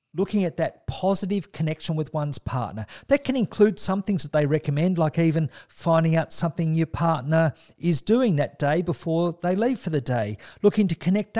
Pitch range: 140-185 Hz